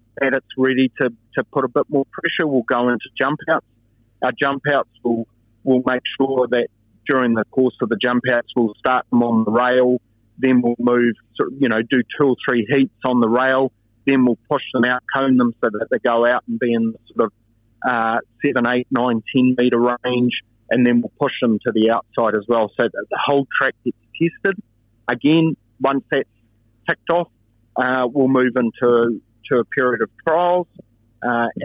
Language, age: English, 30-49